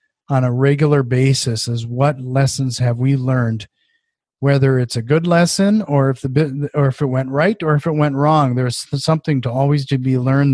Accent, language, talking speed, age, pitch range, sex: American, English, 205 wpm, 40-59, 135-160 Hz, male